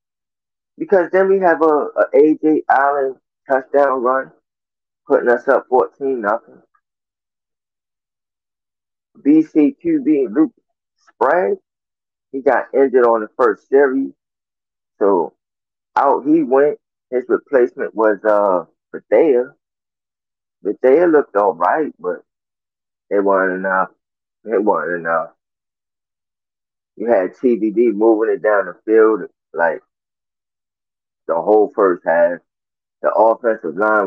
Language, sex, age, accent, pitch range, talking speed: English, male, 20-39, American, 100-150 Hz, 110 wpm